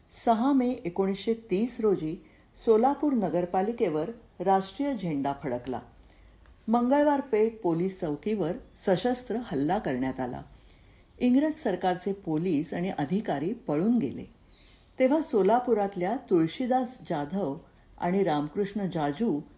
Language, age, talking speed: Marathi, 50-69, 65 wpm